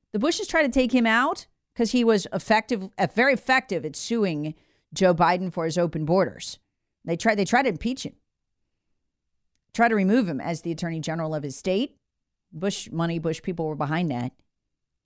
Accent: American